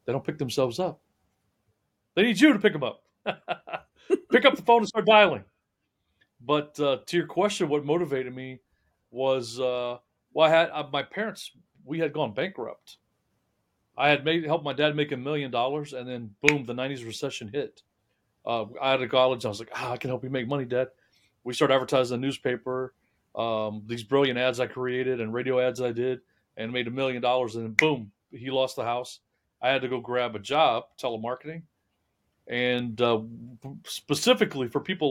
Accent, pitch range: American, 120-155 Hz